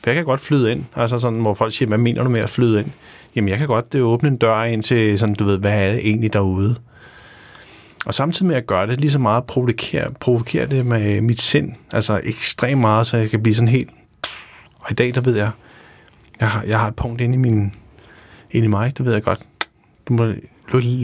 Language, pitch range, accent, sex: Danish, 105-125 Hz, native, male